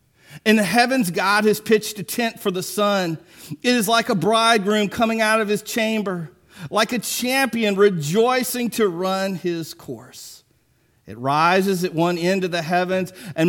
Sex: male